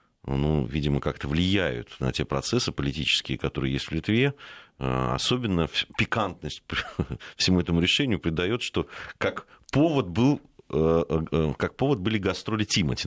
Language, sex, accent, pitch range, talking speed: Russian, male, native, 70-105 Hz, 140 wpm